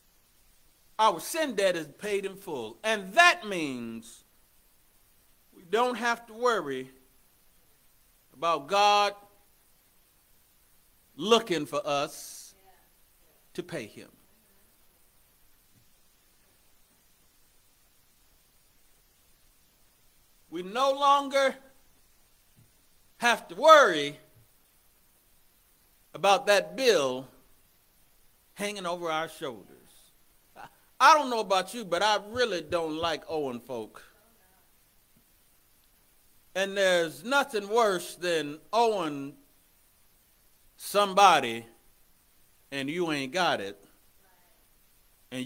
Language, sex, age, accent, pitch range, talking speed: English, male, 60-79, American, 145-235 Hz, 80 wpm